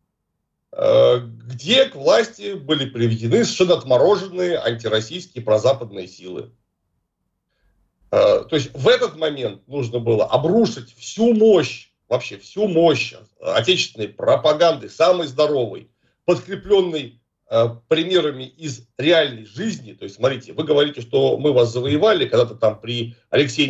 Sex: male